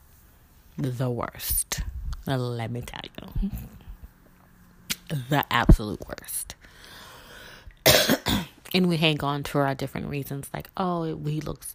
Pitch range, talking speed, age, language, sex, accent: 125-155 Hz, 105 wpm, 20-39, English, female, American